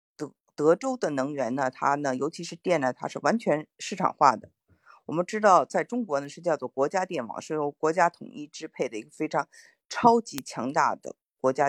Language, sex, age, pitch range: Chinese, female, 50-69, 140-195 Hz